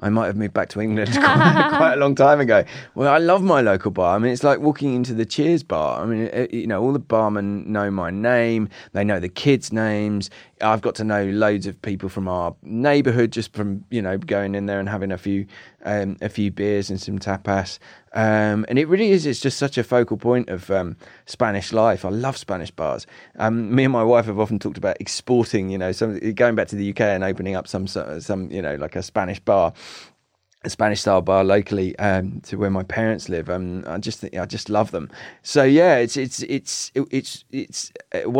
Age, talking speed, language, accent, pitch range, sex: 20-39, 235 wpm, Spanish, British, 100-115 Hz, male